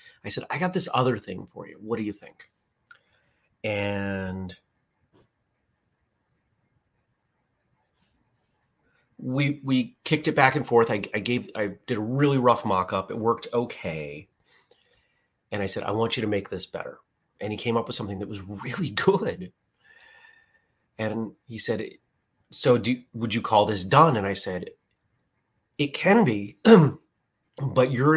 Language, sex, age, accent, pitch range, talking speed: English, male, 30-49, American, 100-135 Hz, 150 wpm